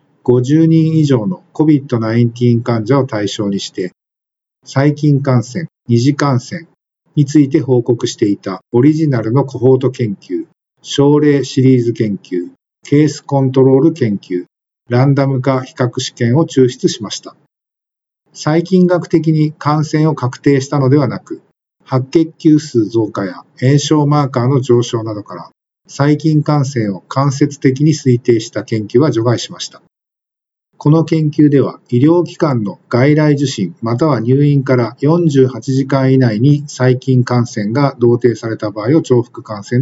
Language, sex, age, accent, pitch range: Japanese, male, 50-69, native, 120-150 Hz